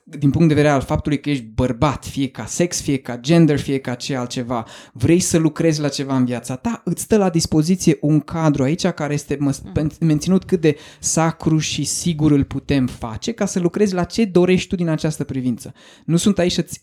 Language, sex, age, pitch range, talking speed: Romanian, male, 20-39, 145-180 Hz, 210 wpm